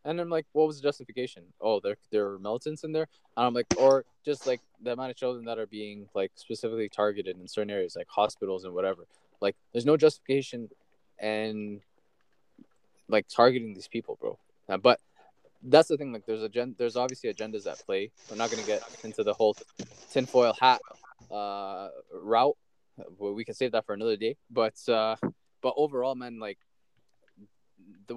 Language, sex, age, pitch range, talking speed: English, male, 20-39, 105-140 Hz, 180 wpm